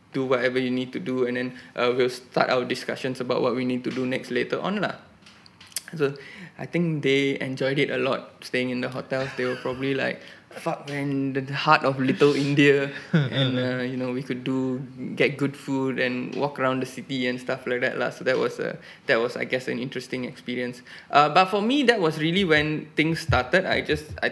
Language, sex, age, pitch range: English, male, 20-39, 130-150 Hz